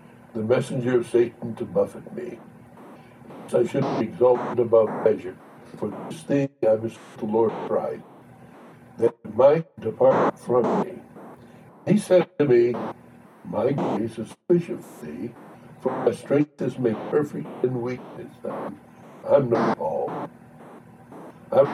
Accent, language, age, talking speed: American, English, 60-79, 145 wpm